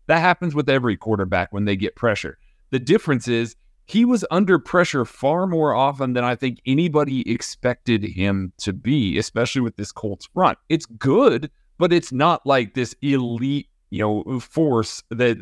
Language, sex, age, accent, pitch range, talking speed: English, male, 30-49, American, 110-135 Hz, 170 wpm